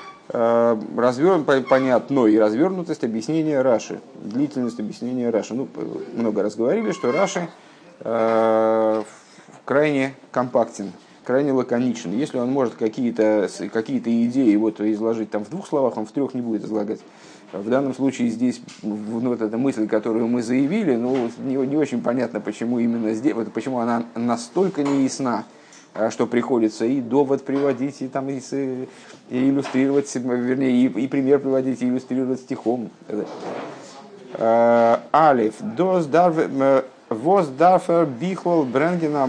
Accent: native